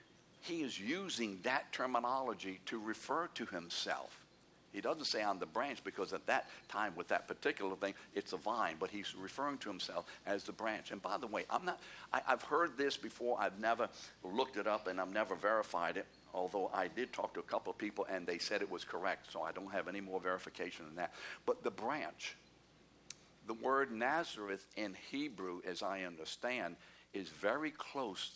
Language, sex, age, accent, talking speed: English, male, 60-79, American, 195 wpm